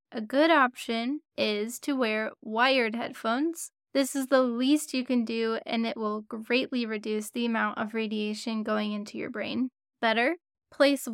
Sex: female